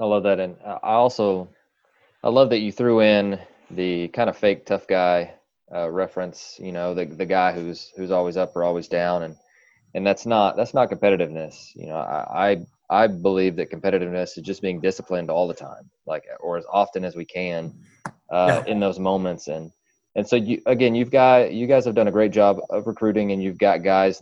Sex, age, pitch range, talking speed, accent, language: male, 20-39, 95-110 Hz, 210 wpm, American, English